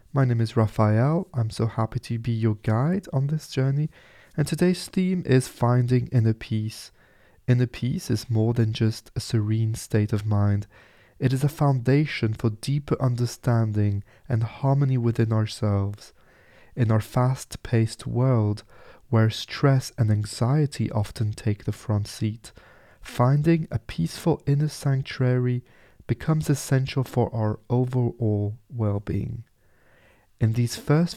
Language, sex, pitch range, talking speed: English, male, 110-135 Hz, 135 wpm